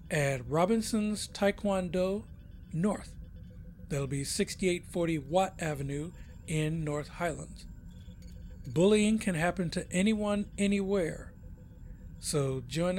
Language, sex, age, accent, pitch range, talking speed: English, male, 60-79, American, 140-185 Hz, 90 wpm